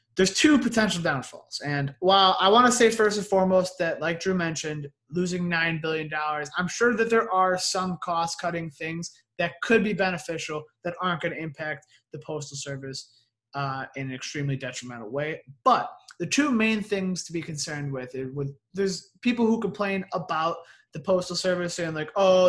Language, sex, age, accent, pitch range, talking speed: English, male, 20-39, American, 150-190 Hz, 180 wpm